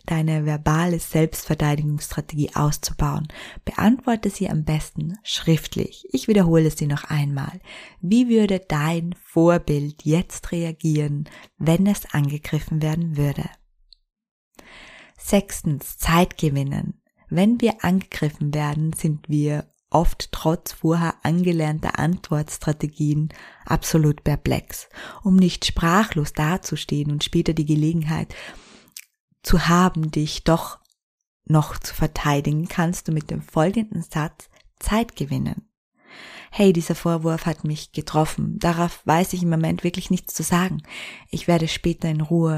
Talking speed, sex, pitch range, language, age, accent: 120 wpm, female, 150-180 Hz, German, 20-39, German